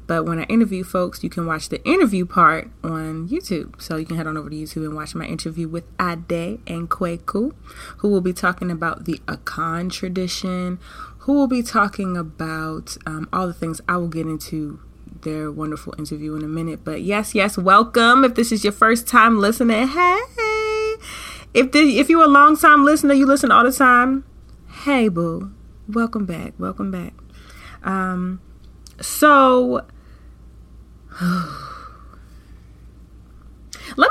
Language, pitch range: English, 165-225 Hz